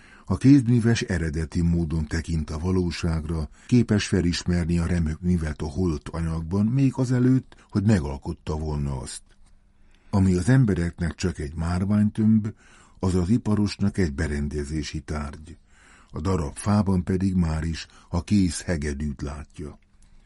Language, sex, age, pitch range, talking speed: Hungarian, male, 60-79, 75-95 Hz, 125 wpm